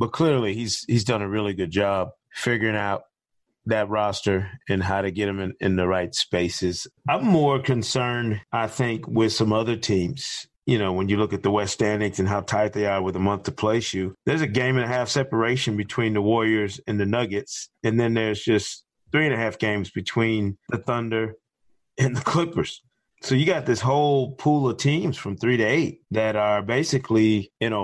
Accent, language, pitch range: American, English, 105-125 Hz